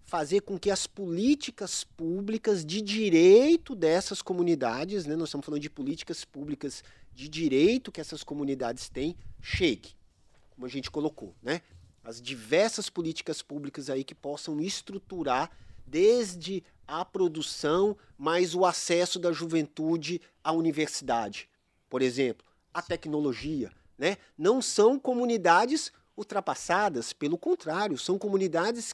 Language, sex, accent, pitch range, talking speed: Portuguese, male, Brazilian, 155-220 Hz, 125 wpm